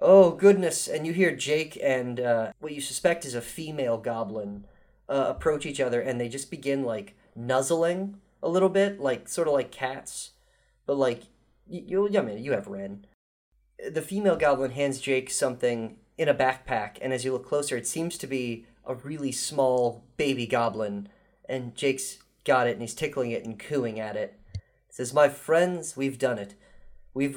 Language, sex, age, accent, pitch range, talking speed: English, male, 30-49, American, 120-165 Hz, 185 wpm